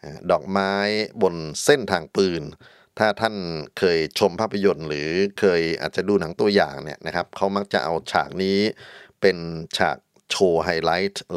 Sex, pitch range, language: male, 85-105 Hz, Thai